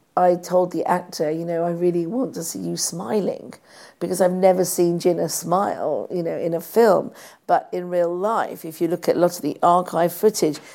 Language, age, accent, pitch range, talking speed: English, 50-69, British, 165-185 Hz, 210 wpm